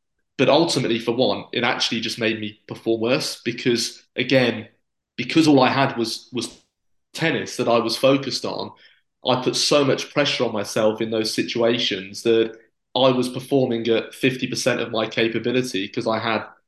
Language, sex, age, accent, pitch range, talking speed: English, male, 20-39, British, 115-130 Hz, 170 wpm